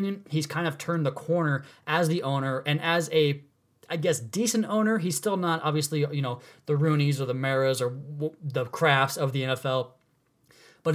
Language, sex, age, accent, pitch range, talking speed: English, male, 30-49, American, 135-165 Hz, 185 wpm